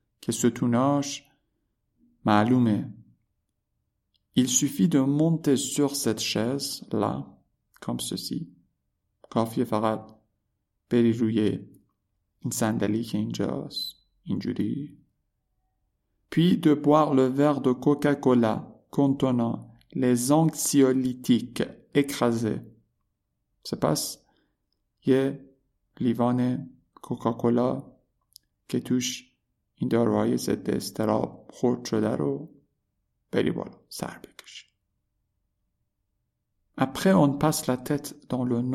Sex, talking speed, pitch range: male, 75 wpm, 105-135 Hz